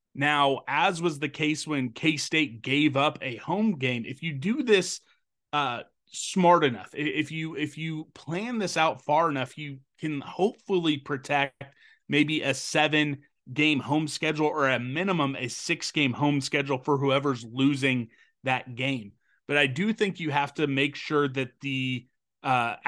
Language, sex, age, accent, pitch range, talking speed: English, male, 30-49, American, 130-155 Hz, 160 wpm